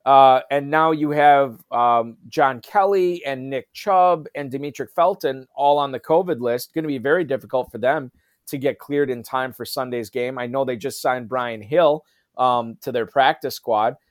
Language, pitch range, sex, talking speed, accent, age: English, 125-160 Hz, male, 200 wpm, American, 30-49